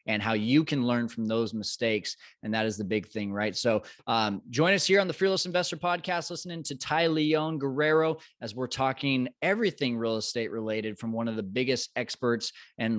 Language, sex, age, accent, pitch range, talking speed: English, male, 20-39, American, 115-150 Hz, 205 wpm